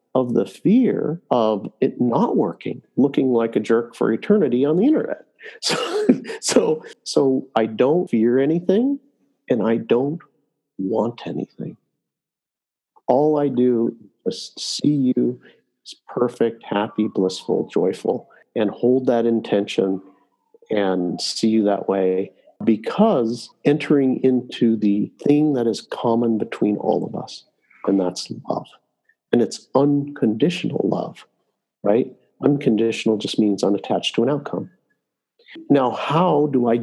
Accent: American